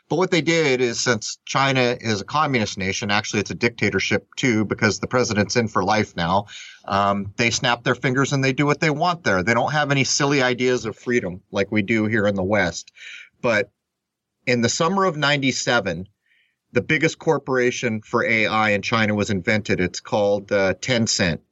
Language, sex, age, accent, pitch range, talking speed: English, male, 30-49, American, 105-130 Hz, 190 wpm